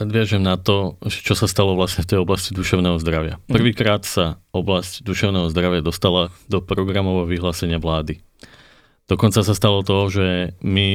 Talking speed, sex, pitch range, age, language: 155 wpm, male, 90-105 Hz, 20-39, Slovak